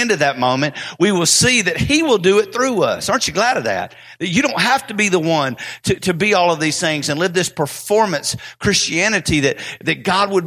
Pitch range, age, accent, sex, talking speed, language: 150-190 Hz, 50-69, American, male, 235 wpm, English